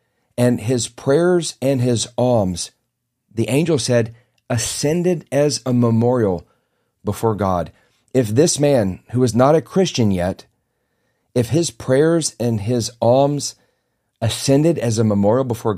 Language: English